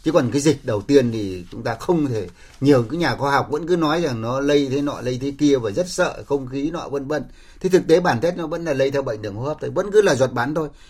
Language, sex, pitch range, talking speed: Vietnamese, male, 120-160 Hz, 310 wpm